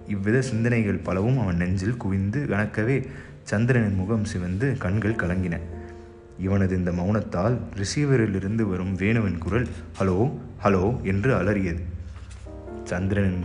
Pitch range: 85-115 Hz